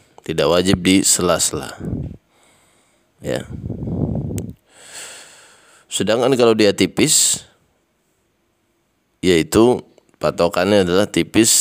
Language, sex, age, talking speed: Indonesian, male, 20-39, 65 wpm